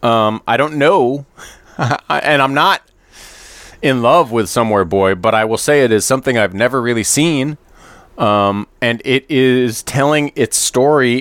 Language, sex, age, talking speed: English, male, 30-49, 160 wpm